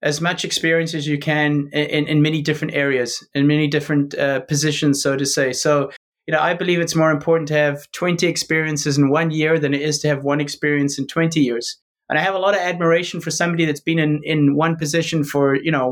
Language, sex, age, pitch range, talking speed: English, male, 30-49, 145-165 Hz, 235 wpm